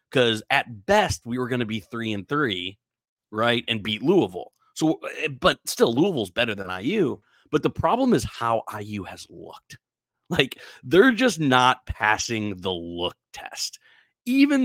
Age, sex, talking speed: 30-49, male, 160 wpm